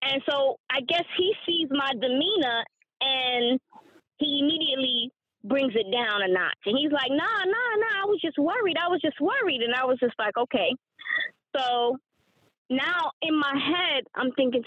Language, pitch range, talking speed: English, 240-310 Hz, 175 wpm